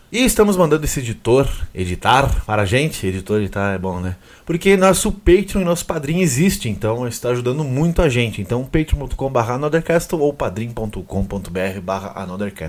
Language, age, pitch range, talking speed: Portuguese, 20-39, 110-150 Hz, 145 wpm